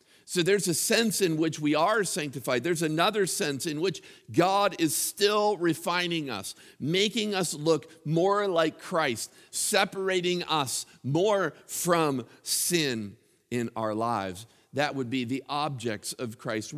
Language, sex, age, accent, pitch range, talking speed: English, male, 50-69, American, 135-175 Hz, 145 wpm